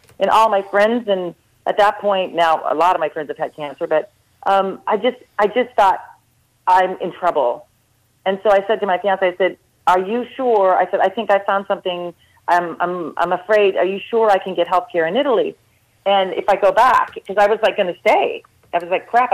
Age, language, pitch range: 40-59, English, 170-205 Hz